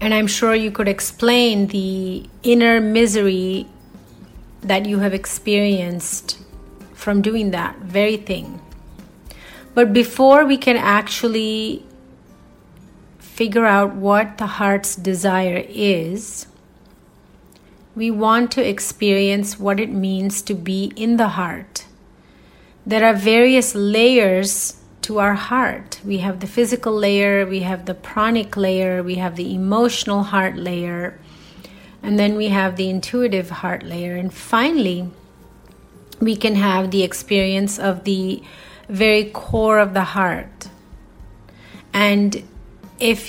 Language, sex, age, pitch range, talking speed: English, female, 30-49, 190-225 Hz, 125 wpm